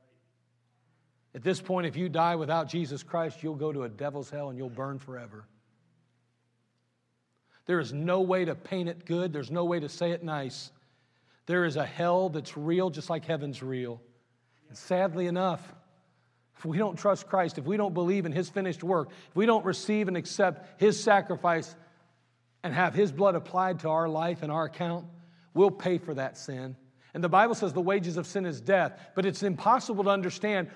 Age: 40-59